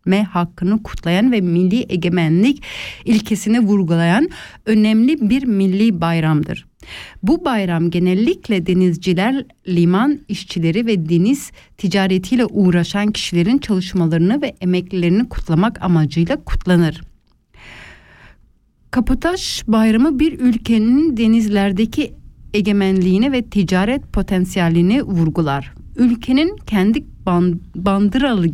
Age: 60-79